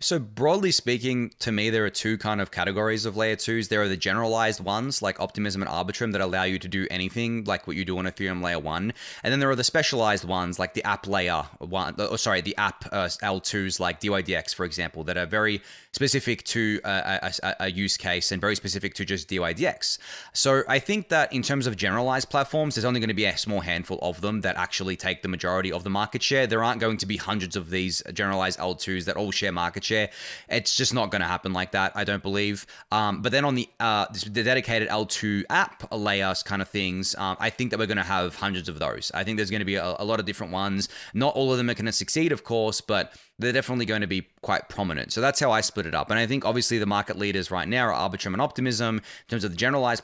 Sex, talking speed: male, 250 wpm